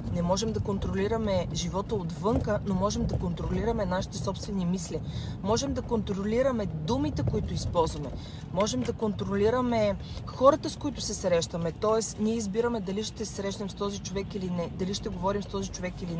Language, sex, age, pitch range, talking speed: Bulgarian, female, 30-49, 175-290 Hz, 165 wpm